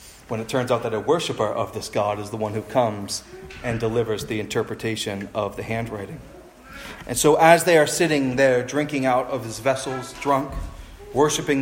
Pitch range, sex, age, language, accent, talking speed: 140-200 Hz, male, 30-49, English, American, 185 wpm